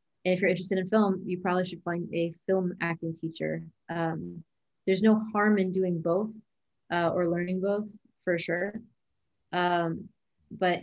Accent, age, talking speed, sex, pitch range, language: American, 30-49, 155 wpm, female, 175-205 Hz, English